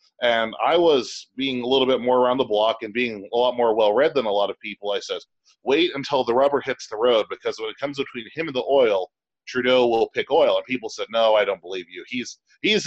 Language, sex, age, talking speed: English, male, 30-49, 255 wpm